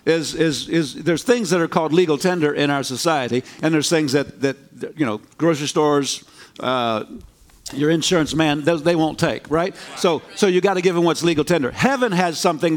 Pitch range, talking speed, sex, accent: 155-195 Hz, 200 wpm, male, American